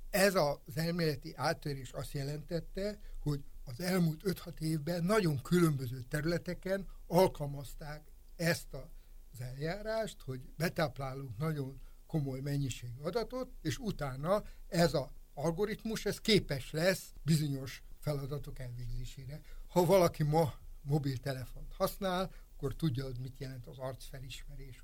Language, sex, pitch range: Hungarian, male, 130-165 Hz